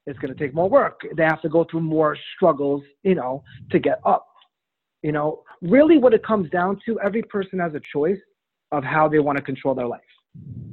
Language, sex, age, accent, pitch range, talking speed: English, male, 30-49, American, 150-215 Hz, 220 wpm